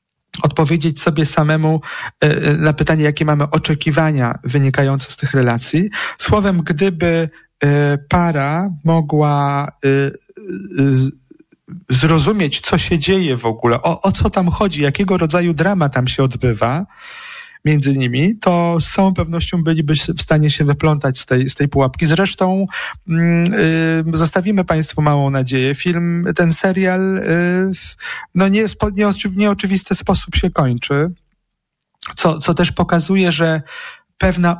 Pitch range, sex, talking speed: 150-185 Hz, male, 130 wpm